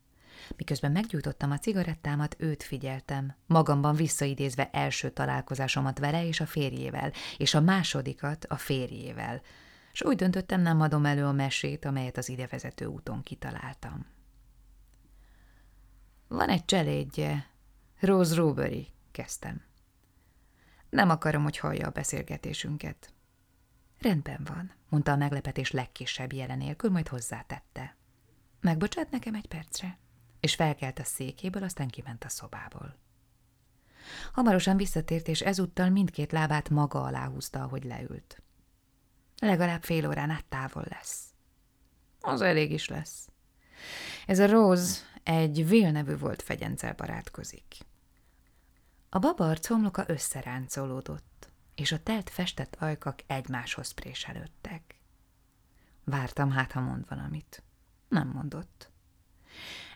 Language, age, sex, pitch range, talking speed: Hungarian, 20-39, female, 125-165 Hz, 110 wpm